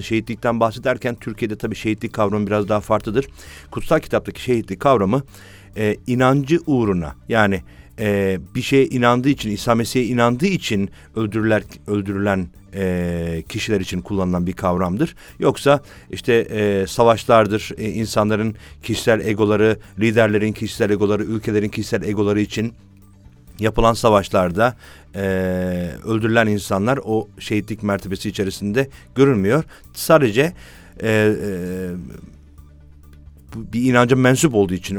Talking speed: 110 wpm